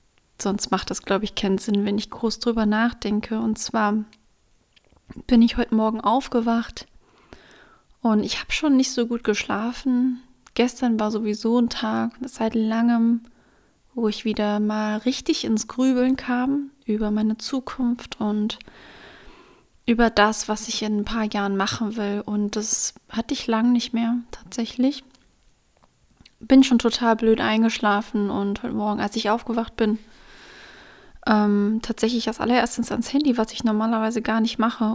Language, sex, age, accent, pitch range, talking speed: German, female, 30-49, German, 215-240 Hz, 150 wpm